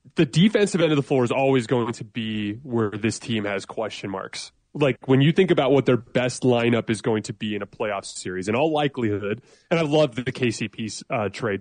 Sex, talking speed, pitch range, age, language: male, 220 wpm, 115-140 Hz, 20-39, English